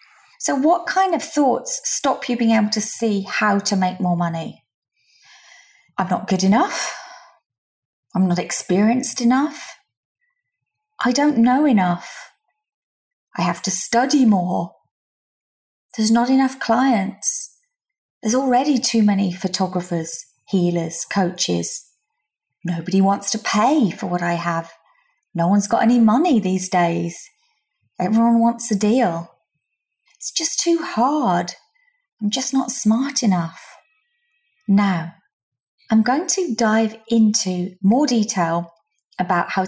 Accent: British